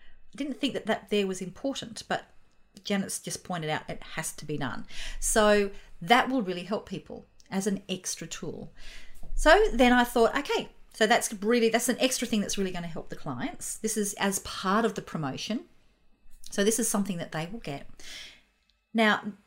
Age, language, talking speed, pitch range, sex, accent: 40-59, English, 190 wpm, 185-245 Hz, female, Australian